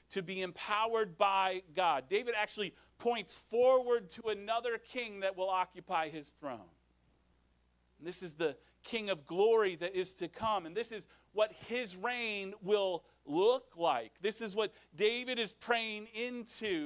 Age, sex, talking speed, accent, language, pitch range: 40-59, male, 155 wpm, American, English, 165-225 Hz